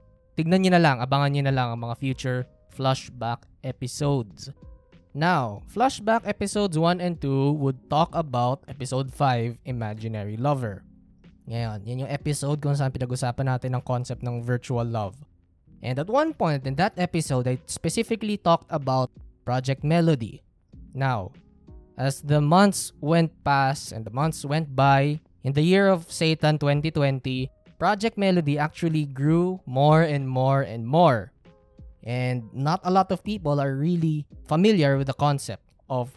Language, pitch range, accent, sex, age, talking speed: Filipino, 125-165 Hz, native, male, 20-39, 150 wpm